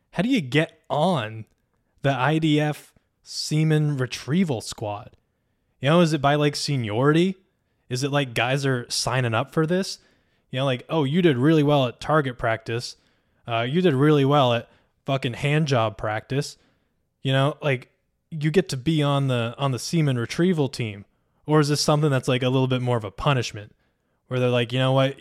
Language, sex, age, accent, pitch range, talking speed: English, male, 20-39, American, 115-140 Hz, 190 wpm